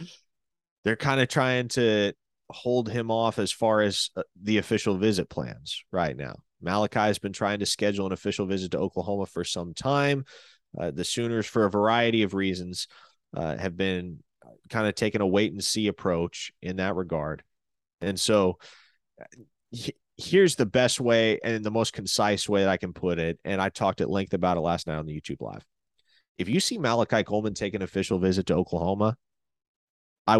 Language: English